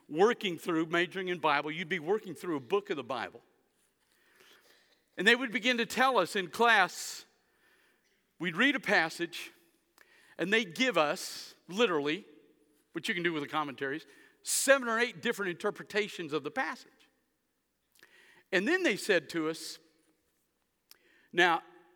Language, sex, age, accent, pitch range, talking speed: English, male, 50-69, American, 170-265 Hz, 150 wpm